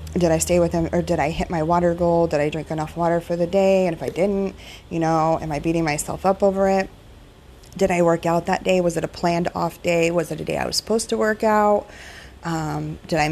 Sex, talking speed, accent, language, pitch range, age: female, 260 wpm, American, English, 155-175 Hz, 20-39